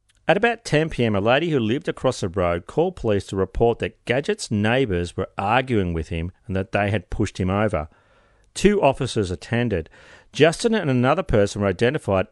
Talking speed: 180 wpm